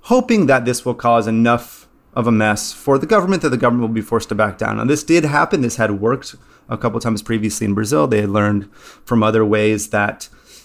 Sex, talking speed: male, 235 wpm